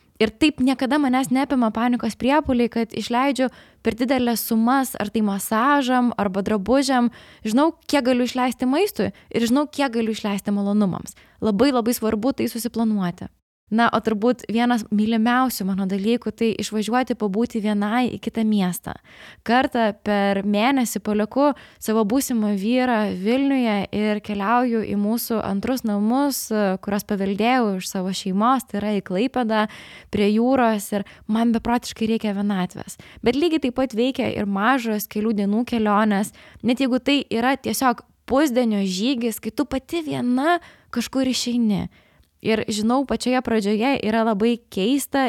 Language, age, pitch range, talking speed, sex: English, 20-39, 210-255 Hz, 140 wpm, female